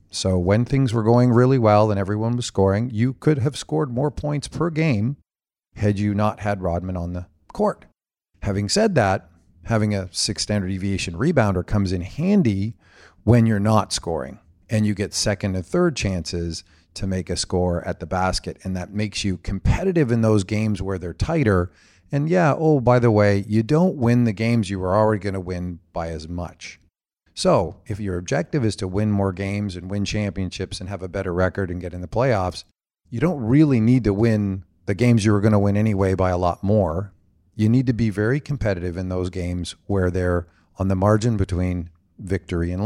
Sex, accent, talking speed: male, American, 205 wpm